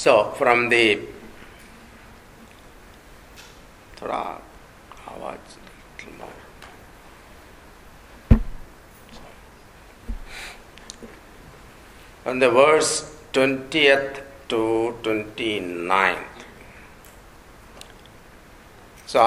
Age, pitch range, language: 60-79, 100-125 Hz, English